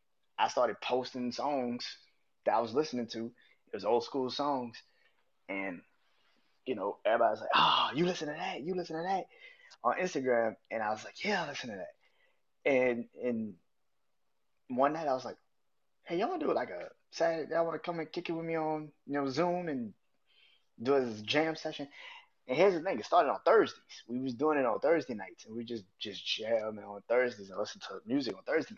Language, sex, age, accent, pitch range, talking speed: English, male, 20-39, American, 105-150 Hz, 210 wpm